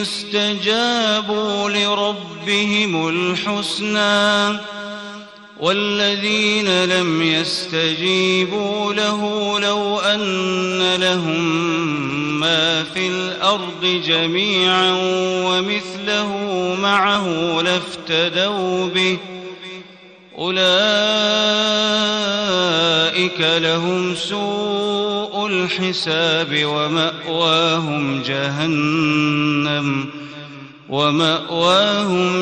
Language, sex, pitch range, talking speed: Arabic, male, 165-205 Hz, 45 wpm